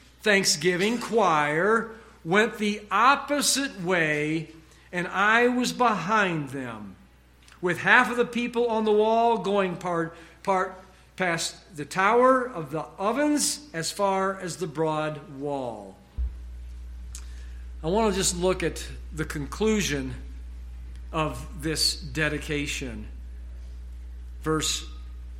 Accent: American